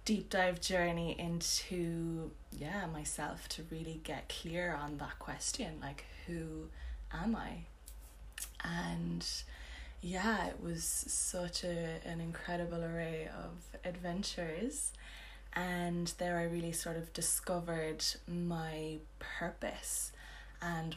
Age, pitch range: 20-39, 150-175 Hz